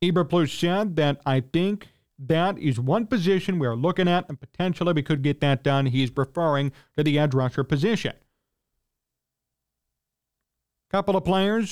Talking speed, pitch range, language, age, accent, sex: 155 wpm, 140-190 Hz, English, 40-59, American, male